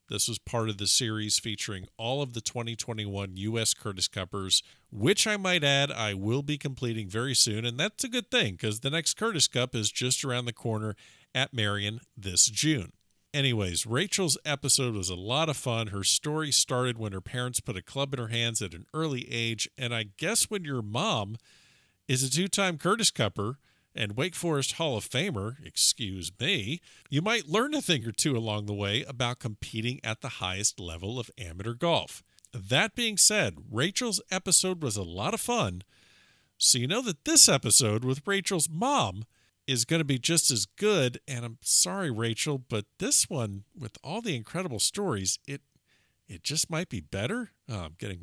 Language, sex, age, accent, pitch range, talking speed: English, male, 50-69, American, 110-155 Hz, 190 wpm